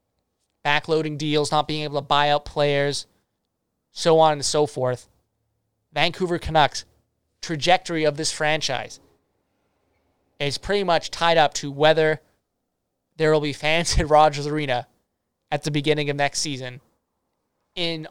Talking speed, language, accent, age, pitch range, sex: 135 wpm, English, American, 20-39, 135-170 Hz, male